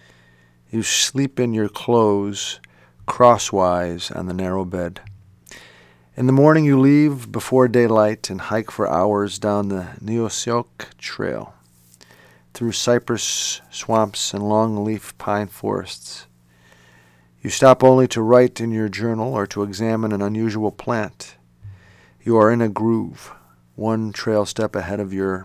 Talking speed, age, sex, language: 135 wpm, 40-59, male, English